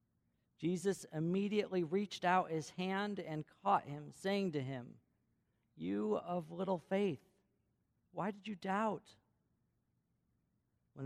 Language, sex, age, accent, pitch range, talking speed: English, male, 50-69, American, 140-180 Hz, 115 wpm